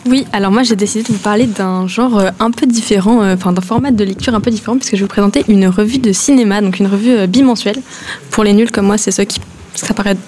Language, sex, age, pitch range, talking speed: French, female, 20-39, 200-245 Hz, 275 wpm